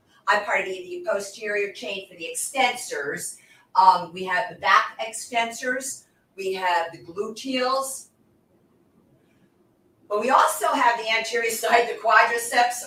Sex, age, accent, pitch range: female, 50-69, American, 195-260 Hz